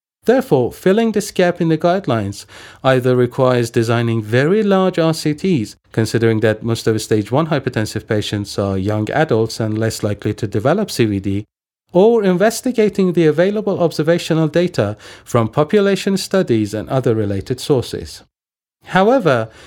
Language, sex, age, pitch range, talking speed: Persian, male, 40-59, 115-180 Hz, 135 wpm